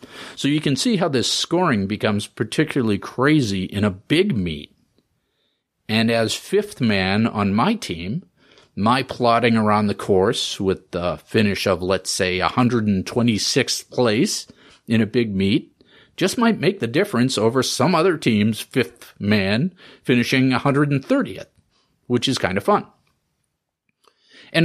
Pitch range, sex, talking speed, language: 100-135 Hz, male, 140 wpm, English